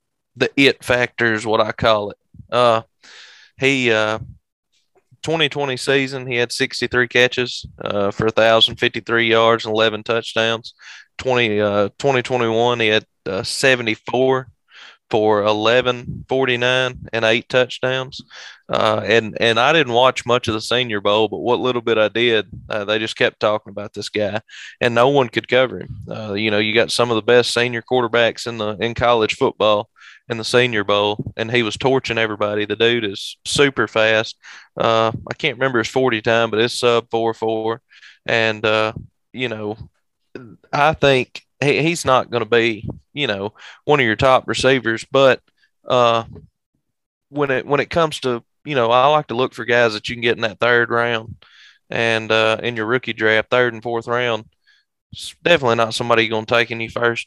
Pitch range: 110-125 Hz